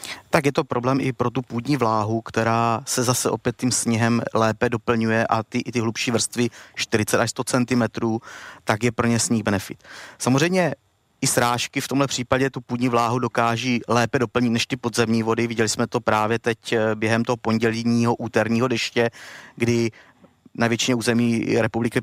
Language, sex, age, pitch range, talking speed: Czech, male, 30-49, 115-125 Hz, 170 wpm